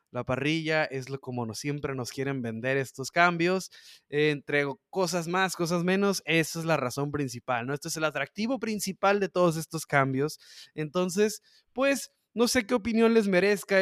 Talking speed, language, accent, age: 180 wpm, Spanish, Mexican, 20-39